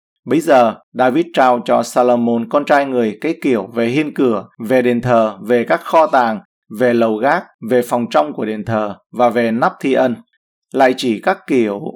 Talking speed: 195 wpm